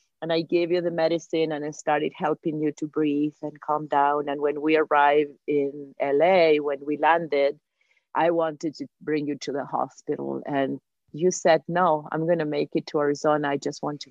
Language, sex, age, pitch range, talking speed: English, female, 30-49, 140-165 Hz, 205 wpm